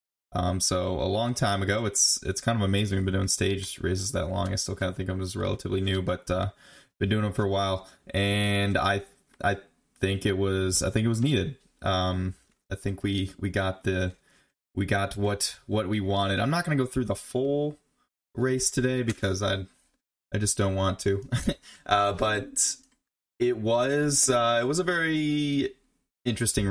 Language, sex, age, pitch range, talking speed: English, male, 20-39, 95-115 Hz, 190 wpm